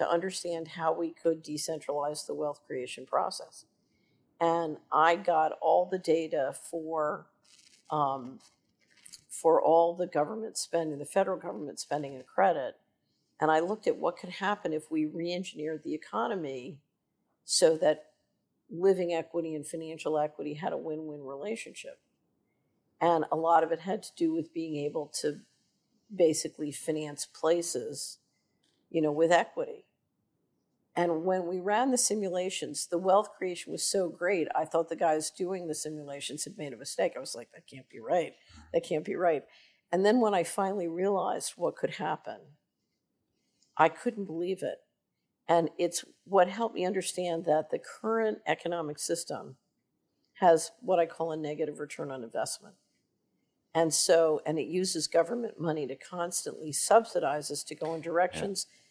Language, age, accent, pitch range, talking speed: Dutch, 50-69, American, 155-185 Hz, 155 wpm